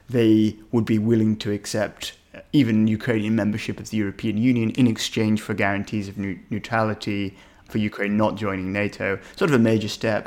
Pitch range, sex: 100-115 Hz, male